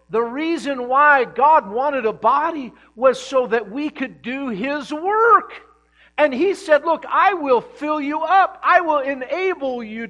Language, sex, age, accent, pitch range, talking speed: English, male, 50-69, American, 175-240 Hz, 165 wpm